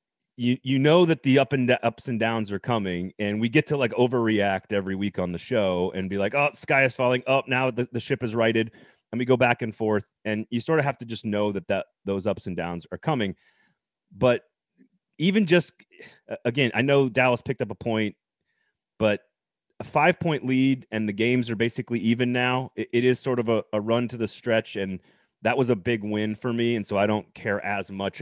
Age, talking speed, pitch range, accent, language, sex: 30-49, 230 wpm, 95-125 Hz, American, English, male